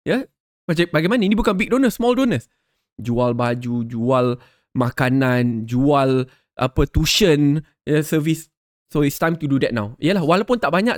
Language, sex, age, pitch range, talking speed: Malay, male, 20-39, 150-225 Hz, 165 wpm